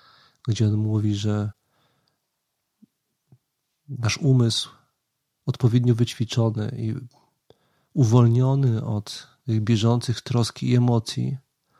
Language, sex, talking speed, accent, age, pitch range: Polish, male, 80 wpm, native, 40-59, 110-130 Hz